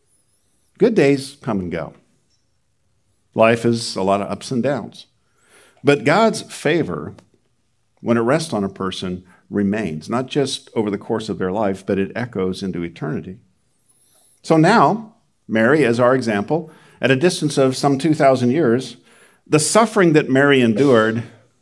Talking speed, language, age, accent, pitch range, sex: 150 wpm, English, 50-69, American, 105-145 Hz, male